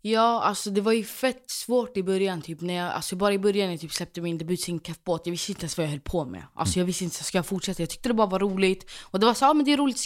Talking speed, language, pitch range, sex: 340 wpm, Swedish, 165-215 Hz, female